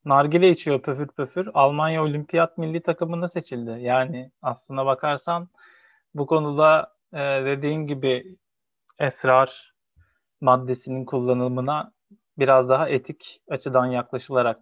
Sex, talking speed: male, 105 wpm